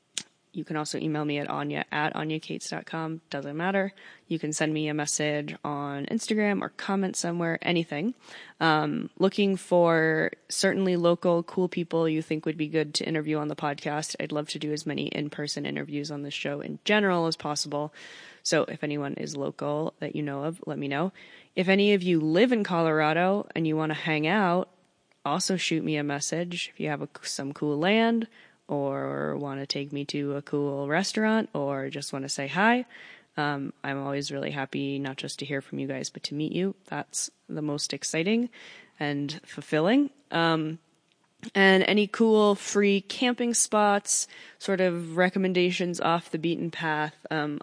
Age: 20-39